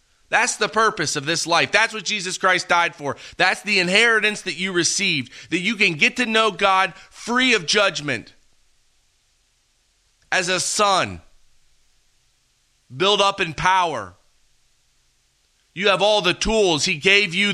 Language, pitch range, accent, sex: English, 145-195 Hz, American, male